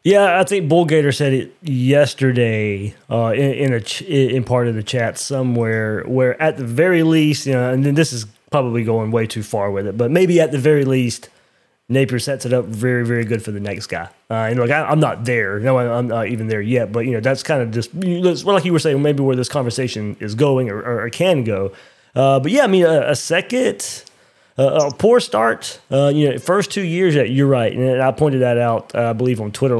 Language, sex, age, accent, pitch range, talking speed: English, male, 20-39, American, 115-145 Hz, 240 wpm